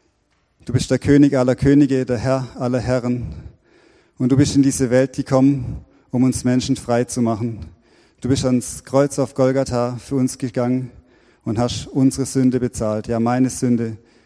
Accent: German